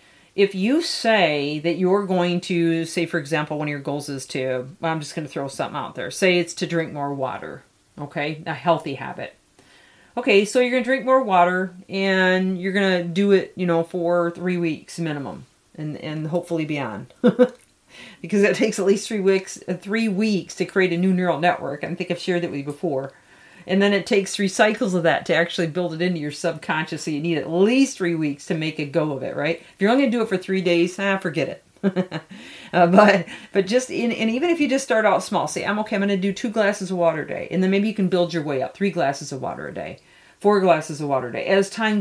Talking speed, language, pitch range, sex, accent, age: 245 wpm, English, 165-200 Hz, female, American, 40-59